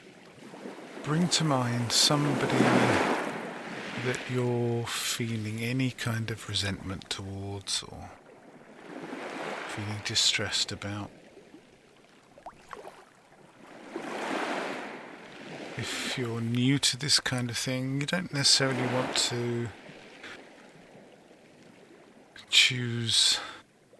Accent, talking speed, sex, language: British, 75 wpm, male, English